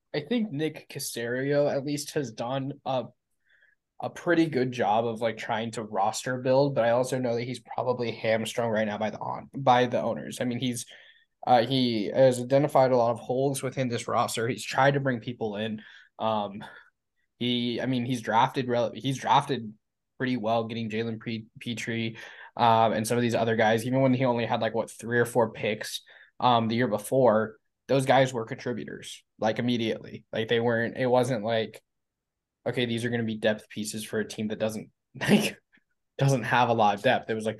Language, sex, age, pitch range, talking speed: English, male, 10-29, 110-130 Hz, 200 wpm